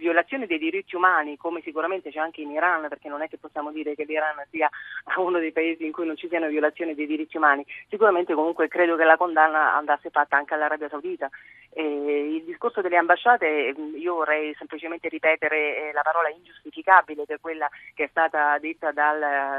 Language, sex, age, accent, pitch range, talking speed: Italian, female, 30-49, native, 145-160 Hz, 185 wpm